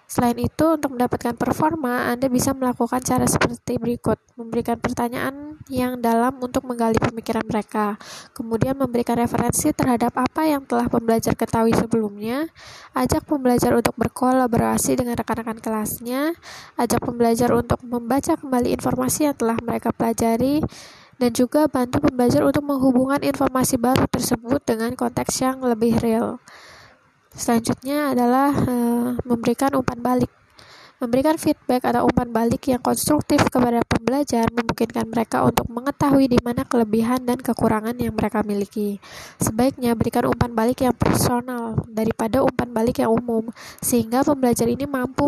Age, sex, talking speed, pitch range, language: 10-29, female, 135 wpm, 235-265 Hz, Indonesian